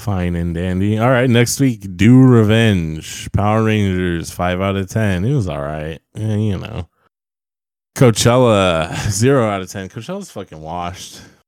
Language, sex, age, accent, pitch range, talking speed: English, male, 20-39, American, 90-115 Hz, 155 wpm